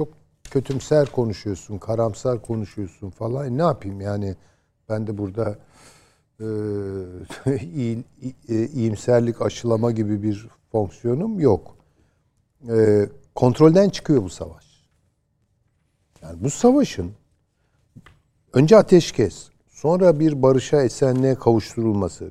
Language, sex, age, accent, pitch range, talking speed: Turkish, male, 60-79, native, 105-140 Hz, 90 wpm